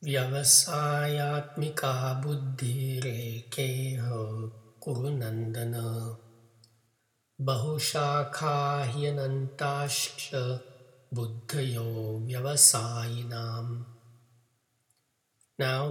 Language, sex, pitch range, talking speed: English, male, 120-140 Hz, 40 wpm